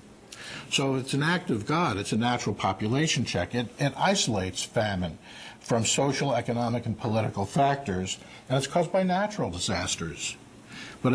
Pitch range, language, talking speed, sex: 100-130 Hz, English, 150 wpm, male